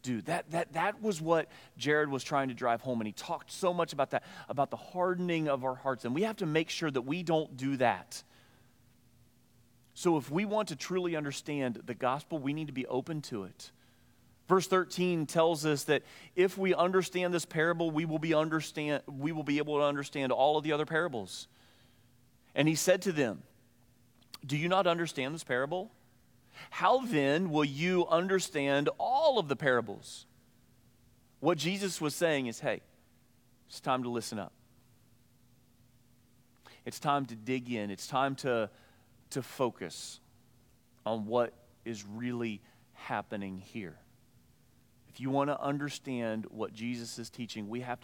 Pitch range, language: 120-160 Hz, English